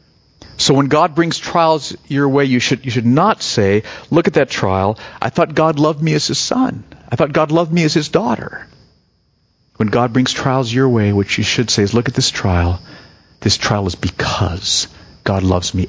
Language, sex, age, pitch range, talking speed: English, male, 50-69, 90-120 Hz, 210 wpm